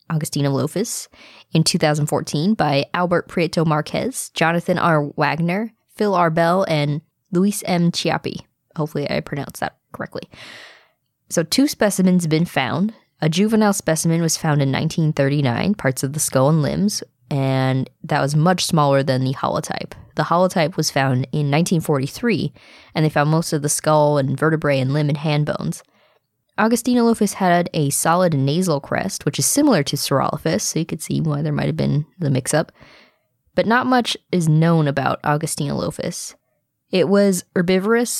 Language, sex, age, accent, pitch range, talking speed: English, female, 10-29, American, 145-185 Hz, 160 wpm